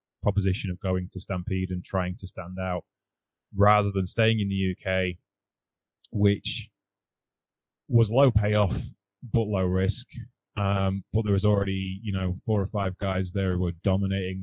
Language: English